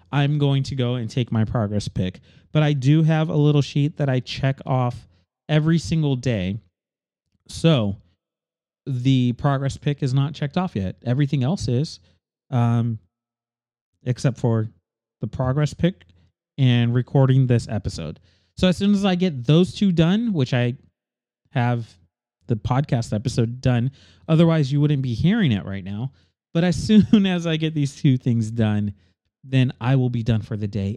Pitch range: 115-155 Hz